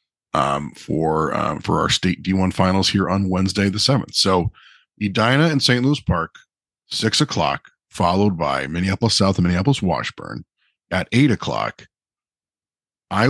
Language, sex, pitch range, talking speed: English, male, 90-110 Hz, 145 wpm